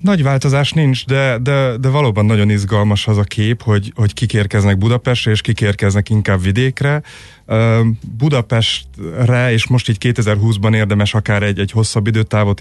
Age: 30-49